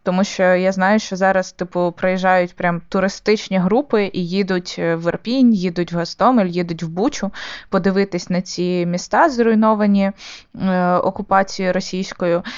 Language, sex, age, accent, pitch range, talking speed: Ukrainian, female, 20-39, native, 185-220 Hz, 140 wpm